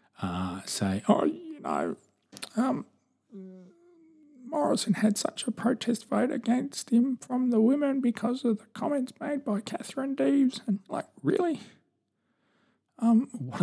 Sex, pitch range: male, 100-145 Hz